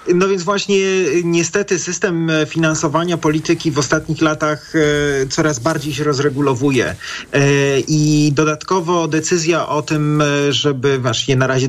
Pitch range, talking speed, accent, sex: 135-165 Hz, 120 wpm, native, male